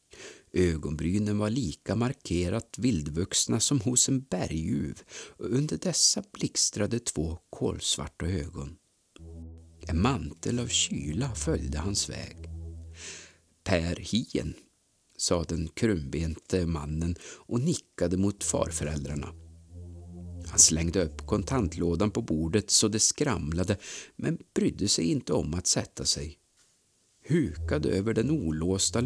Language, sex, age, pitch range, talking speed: Swedish, male, 50-69, 80-105 Hz, 110 wpm